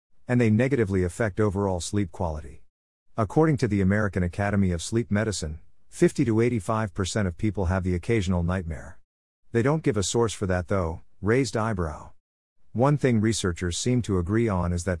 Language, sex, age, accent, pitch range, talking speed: English, male, 50-69, American, 90-110 Hz, 170 wpm